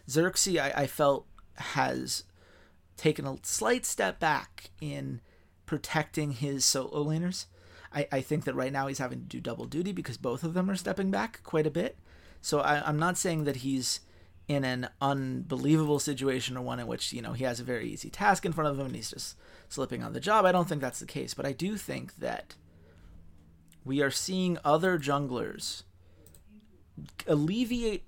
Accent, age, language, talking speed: American, 30-49, English, 185 wpm